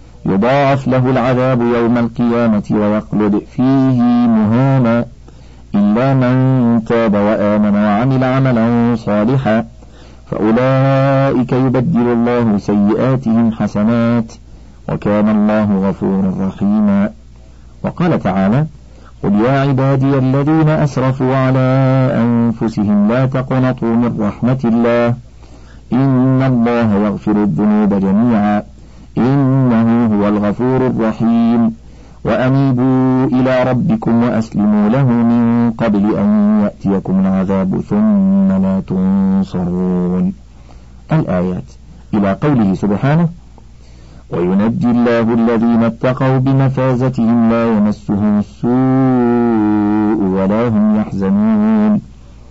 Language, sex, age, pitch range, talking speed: Arabic, male, 50-69, 105-130 Hz, 85 wpm